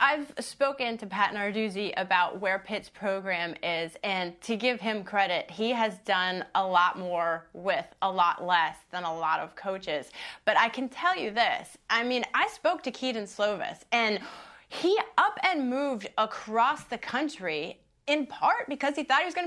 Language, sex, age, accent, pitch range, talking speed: English, female, 30-49, American, 210-275 Hz, 180 wpm